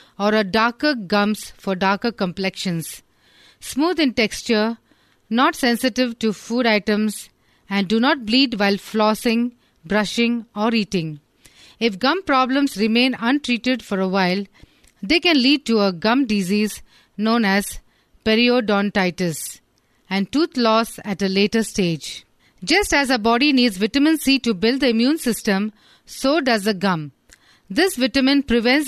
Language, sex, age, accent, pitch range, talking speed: English, female, 40-59, Indian, 200-255 Hz, 140 wpm